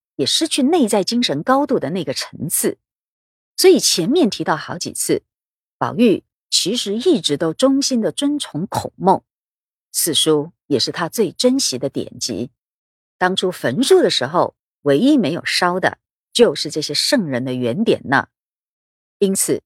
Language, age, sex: Chinese, 50-69, female